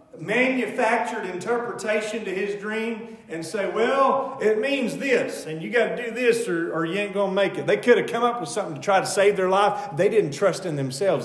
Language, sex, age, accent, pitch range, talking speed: English, male, 40-59, American, 175-235 Hz, 230 wpm